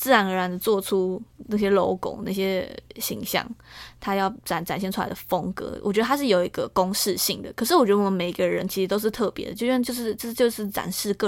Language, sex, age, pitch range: Chinese, female, 20-39, 185-225 Hz